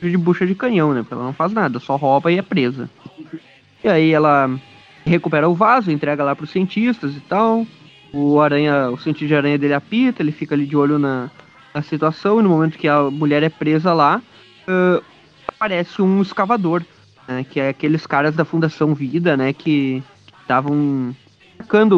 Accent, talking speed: Brazilian, 190 wpm